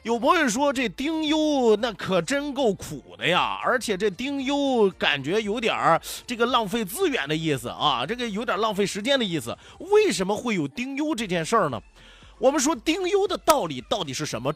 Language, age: Chinese, 30-49